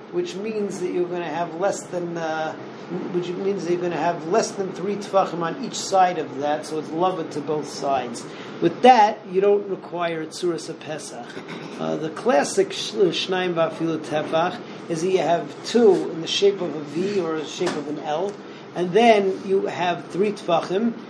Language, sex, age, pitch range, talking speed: English, male, 50-69, 165-200 Hz, 195 wpm